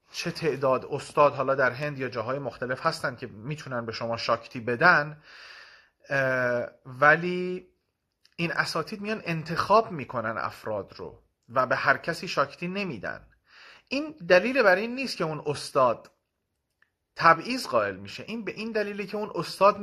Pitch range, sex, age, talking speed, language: 125-155 Hz, male, 30-49, 145 wpm, Persian